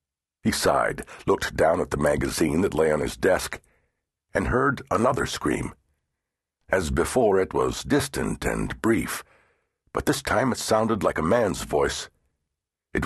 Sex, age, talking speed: male, 60-79, 150 wpm